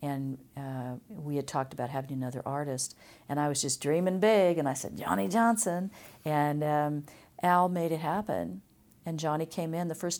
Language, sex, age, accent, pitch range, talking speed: English, female, 50-69, American, 140-180 Hz, 190 wpm